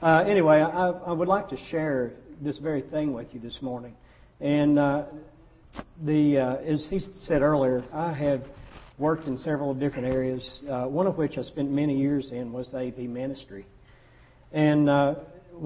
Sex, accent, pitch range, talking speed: male, American, 125-150 Hz, 175 wpm